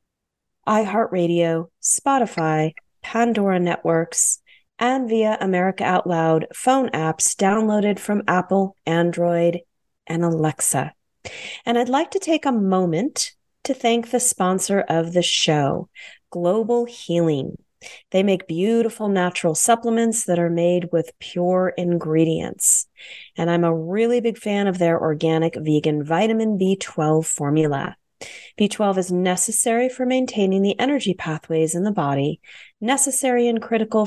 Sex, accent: female, American